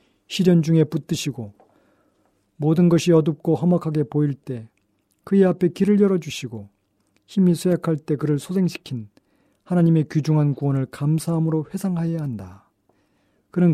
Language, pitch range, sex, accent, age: Korean, 145-175 Hz, male, native, 40-59